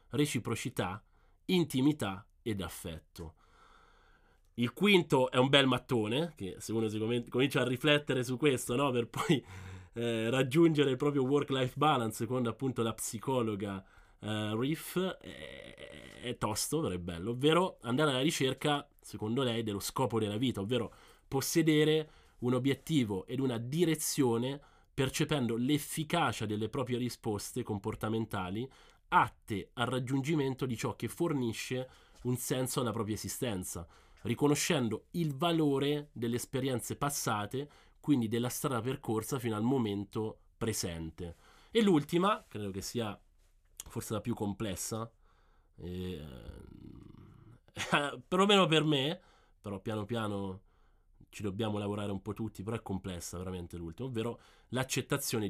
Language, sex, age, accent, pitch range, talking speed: Italian, male, 20-39, native, 105-140 Hz, 125 wpm